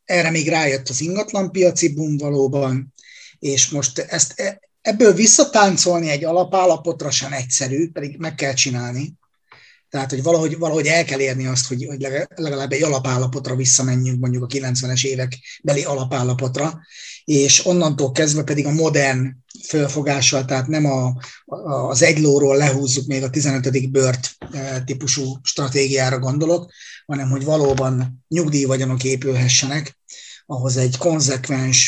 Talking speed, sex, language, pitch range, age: 130 wpm, male, Hungarian, 130-165 Hz, 30-49